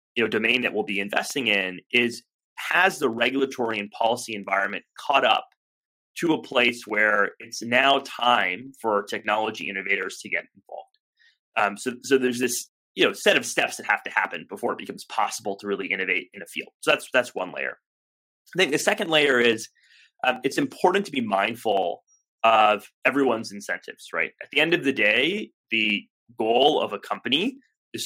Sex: male